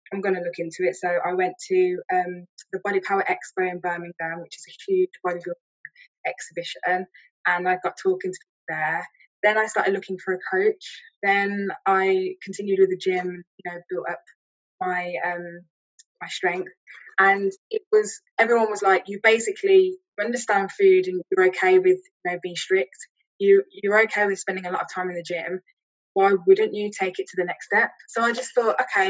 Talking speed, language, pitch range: 195 wpm, English, 180-245 Hz